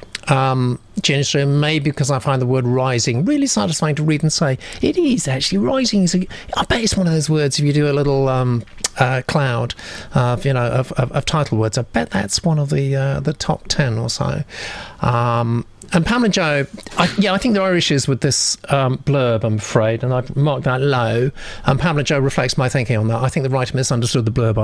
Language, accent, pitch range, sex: English, British, 125-170 Hz, male